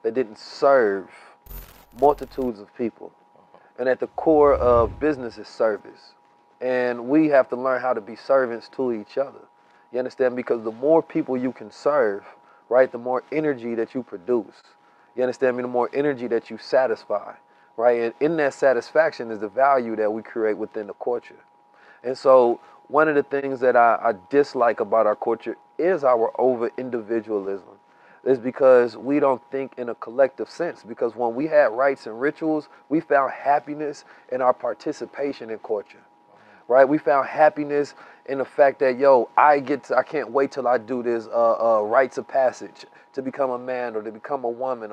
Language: English